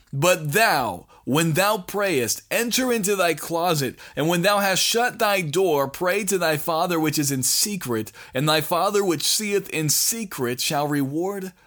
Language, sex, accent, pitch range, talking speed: English, male, American, 140-180 Hz, 170 wpm